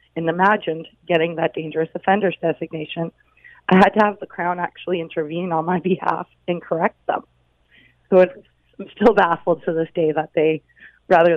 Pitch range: 165-195 Hz